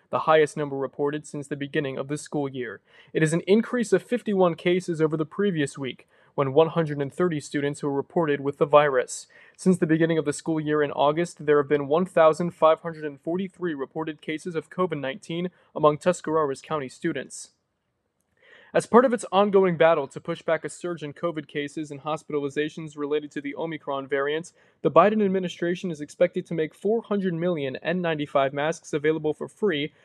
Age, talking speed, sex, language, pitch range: 20-39, 170 wpm, male, English, 150-175 Hz